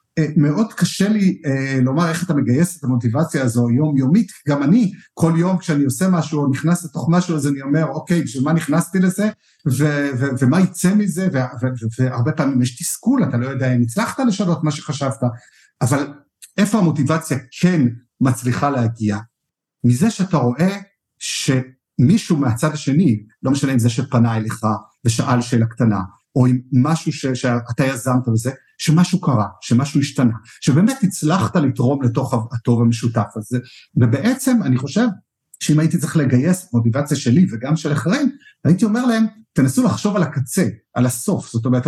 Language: Hebrew